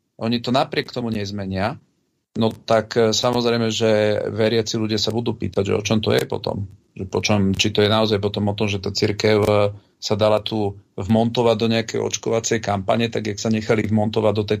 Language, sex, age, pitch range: Slovak, male, 40-59, 105-115 Hz